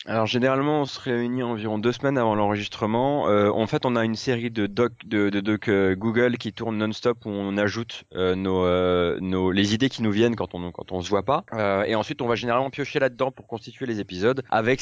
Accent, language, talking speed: French, French, 240 wpm